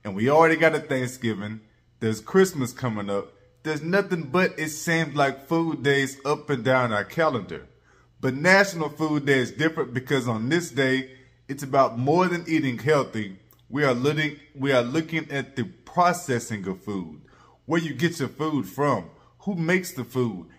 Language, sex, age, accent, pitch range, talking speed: English, male, 20-39, American, 115-150 Hz, 170 wpm